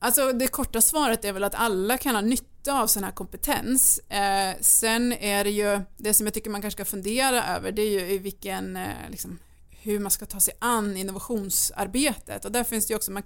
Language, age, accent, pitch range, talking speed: Swedish, 30-49, native, 195-235 Hz, 230 wpm